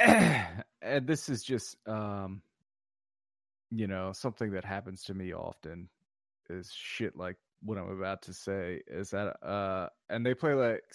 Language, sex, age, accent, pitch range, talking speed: English, male, 20-39, American, 100-120 Hz, 155 wpm